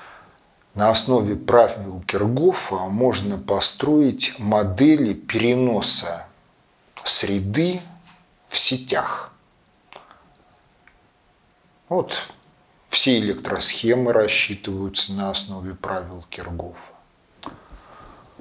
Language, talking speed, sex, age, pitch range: Russian, 60 wpm, male, 40-59, 100-130 Hz